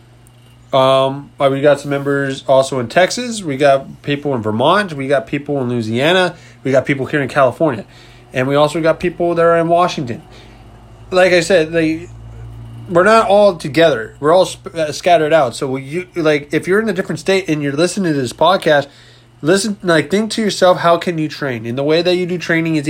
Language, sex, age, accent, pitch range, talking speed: English, male, 20-39, American, 125-175 Hz, 200 wpm